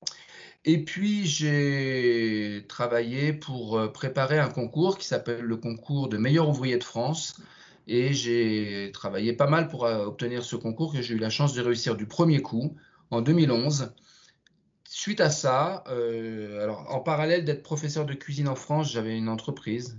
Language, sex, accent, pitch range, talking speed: French, male, French, 120-150 Hz, 160 wpm